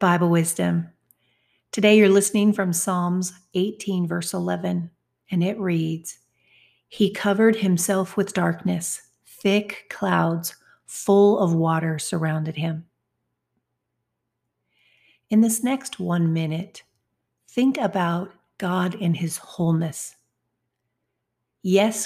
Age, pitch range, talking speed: 50-69, 170-195 Hz, 100 wpm